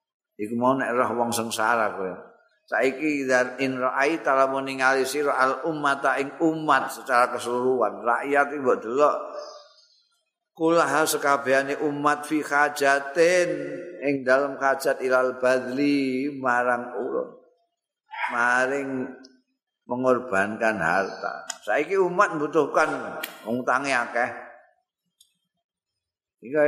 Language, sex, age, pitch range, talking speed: Indonesian, male, 50-69, 115-175 Hz, 100 wpm